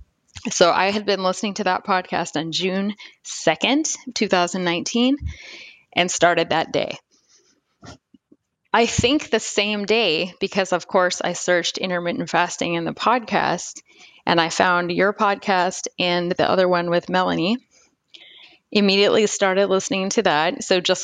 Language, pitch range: English, 175-205 Hz